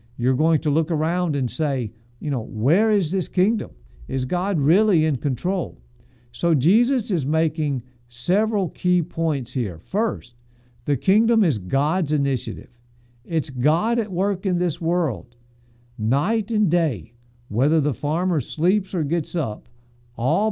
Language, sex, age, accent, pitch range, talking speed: English, male, 50-69, American, 120-170 Hz, 145 wpm